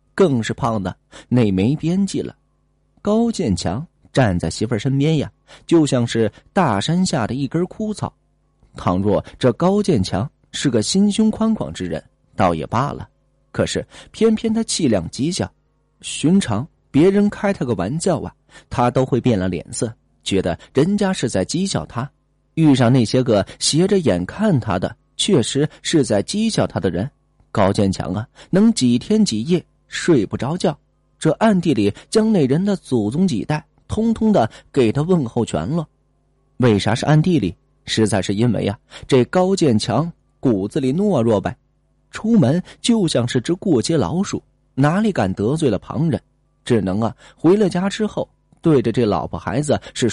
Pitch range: 115-180 Hz